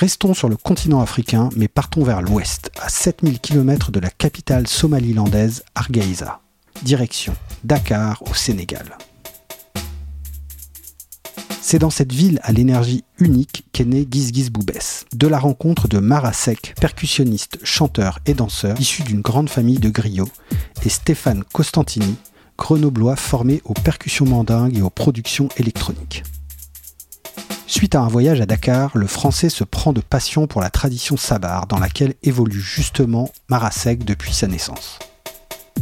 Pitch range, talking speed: 105-145 Hz, 140 wpm